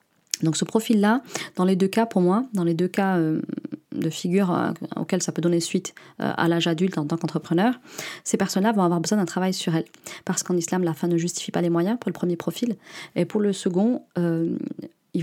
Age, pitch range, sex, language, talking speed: 30-49, 170-200 Hz, female, French, 230 wpm